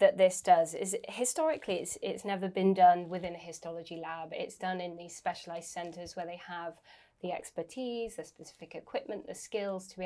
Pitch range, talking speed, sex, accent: 175-235 Hz, 190 wpm, female, British